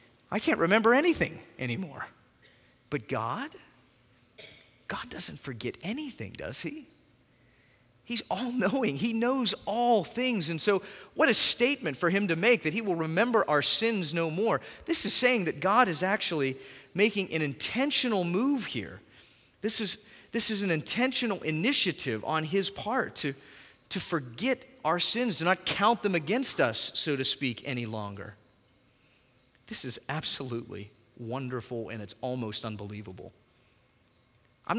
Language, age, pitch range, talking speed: English, 30-49, 120-190 Hz, 145 wpm